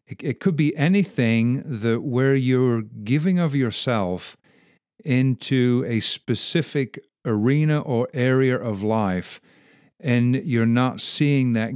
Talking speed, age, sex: 115 wpm, 50-69, male